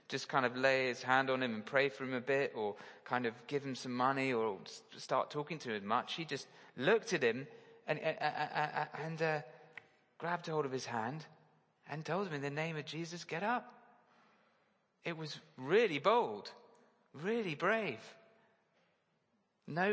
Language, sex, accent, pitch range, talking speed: English, male, British, 135-180 Hz, 185 wpm